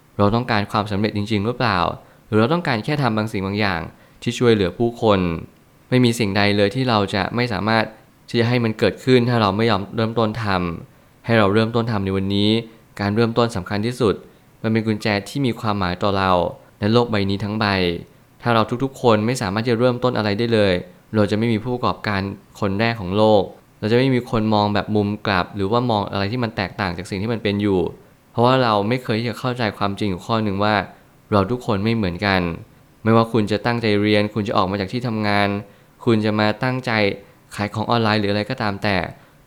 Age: 20-39